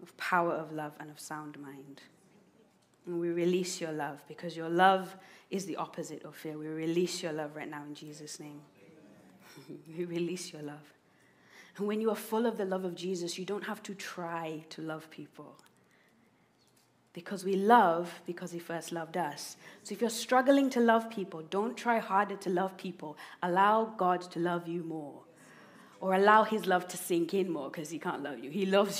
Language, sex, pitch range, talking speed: English, female, 170-205 Hz, 195 wpm